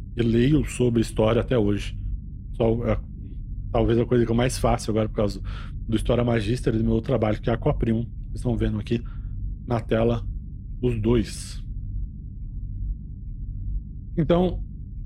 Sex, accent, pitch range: male, Brazilian, 100-140 Hz